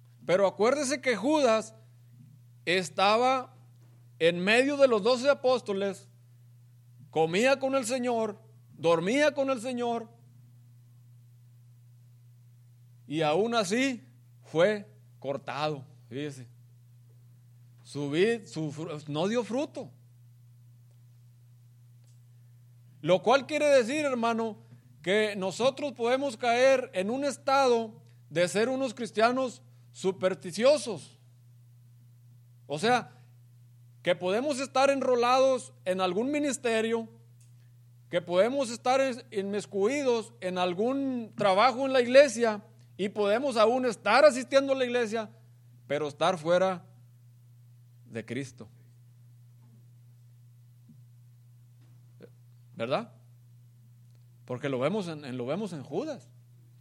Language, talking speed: English, 95 wpm